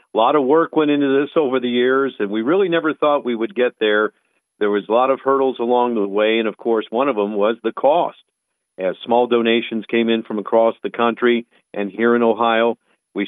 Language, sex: English, male